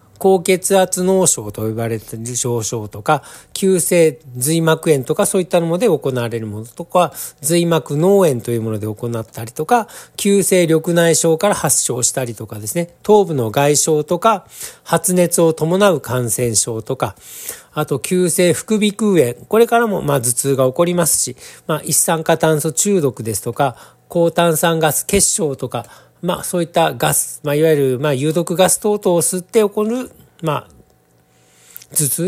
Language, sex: Japanese, male